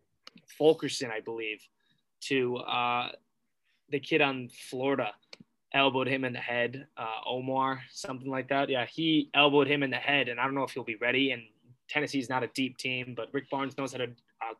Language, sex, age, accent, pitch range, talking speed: English, male, 20-39, American, 120-140 Hz, 195 wpm